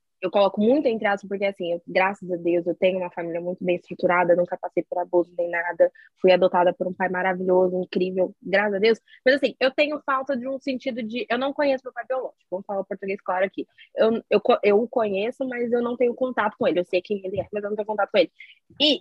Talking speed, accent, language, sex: 255 wpm, Brazilian, Portuguese, female